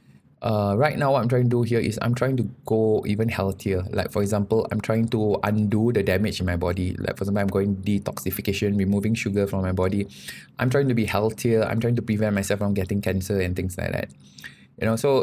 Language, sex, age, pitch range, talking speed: English, male, 20-39, 95-120 Hz, 235 wpm